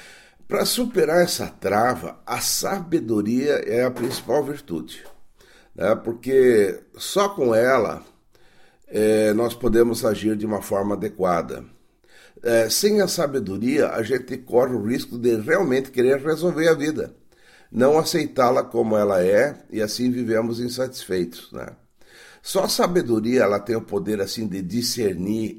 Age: 60-79